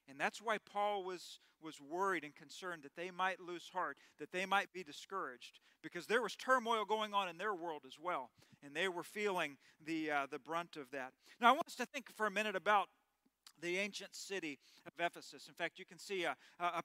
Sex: male